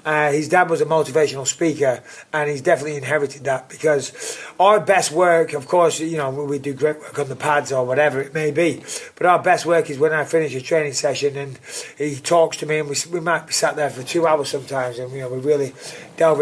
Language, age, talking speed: English, 30-49, 240 wpm